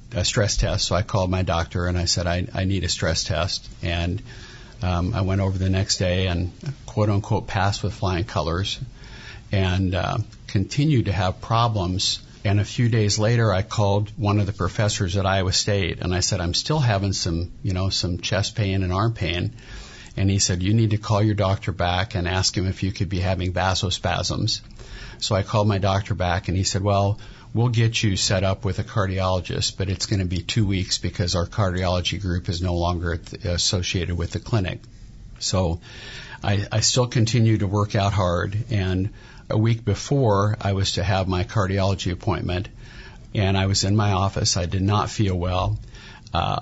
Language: English